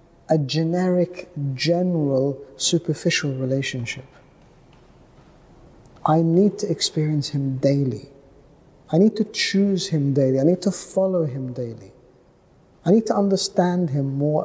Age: 50-69